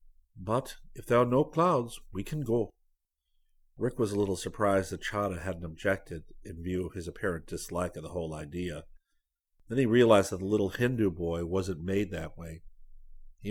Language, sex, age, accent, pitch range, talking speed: English, male, 50-69, American, 80-105 Hz, 180 wpm